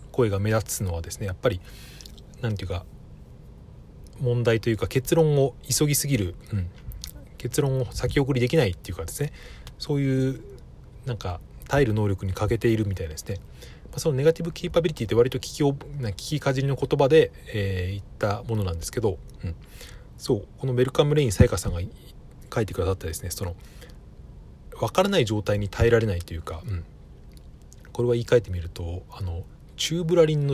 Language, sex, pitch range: Japanese, male, 95-135 Hz